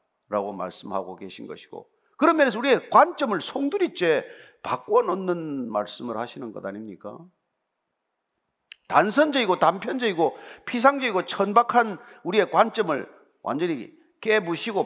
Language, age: Korean, 40-59